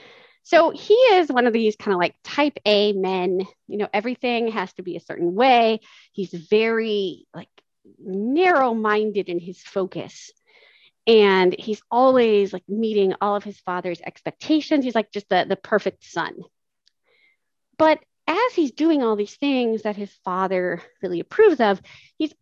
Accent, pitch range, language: American, 185-265 Hz, English